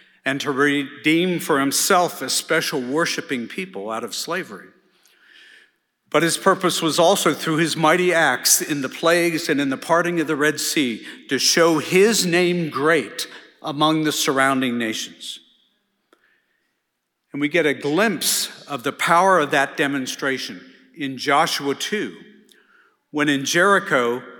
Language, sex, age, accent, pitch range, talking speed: English, male, 50-69, American, 140-175 Hz, 145 wpm